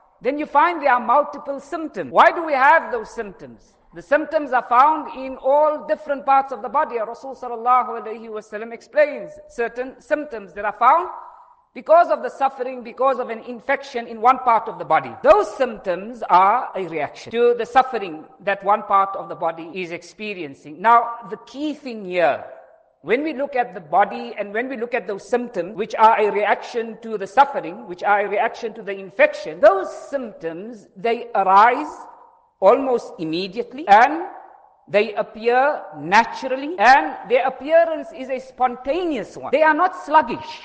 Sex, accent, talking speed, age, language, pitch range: female, Indian, 170 wpm, 50-69, English, 215-280 Hz